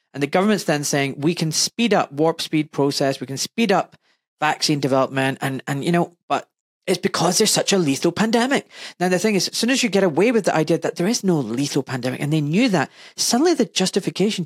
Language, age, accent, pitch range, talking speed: English, 40-59, British, 150-185 Hz, 230 wpm